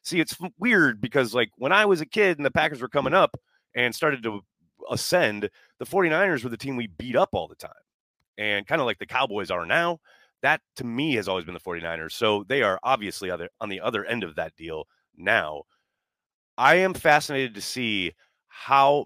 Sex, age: male, 30-49